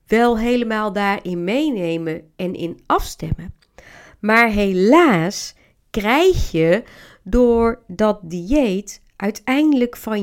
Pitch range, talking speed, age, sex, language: 195-270 Hz, 95 wpm, 40-59, female, Dutch